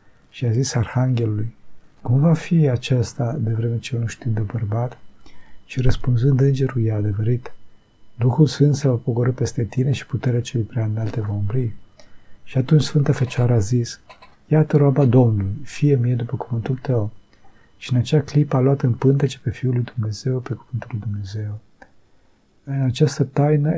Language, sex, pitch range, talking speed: Romanian, male, 110-135 Hz, 165 wpm